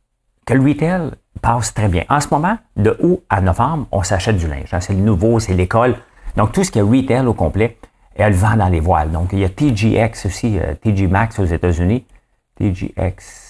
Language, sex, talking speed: English, male, 200 wpm